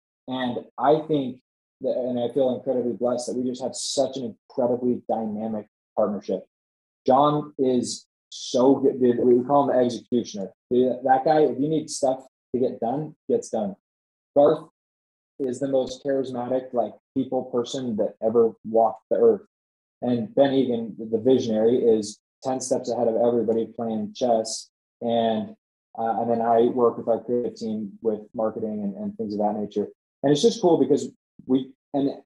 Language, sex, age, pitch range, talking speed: English, male, 20-39, 115-135 Hz, 165 wpm